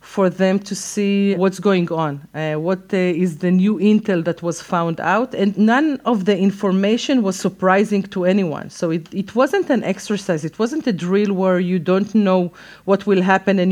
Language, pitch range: English, 180-220 Hz